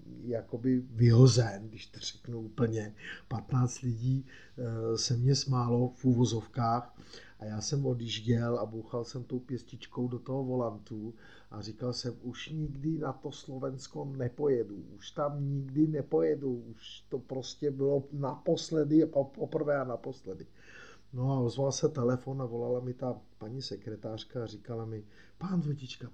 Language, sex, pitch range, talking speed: Czech, male, 120-145 Hz, 140 wpm